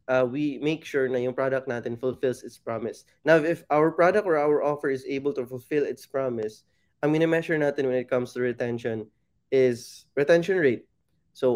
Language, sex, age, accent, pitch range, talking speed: Filipino, male, 20-39, native, 125-150 Hz, 190 wpm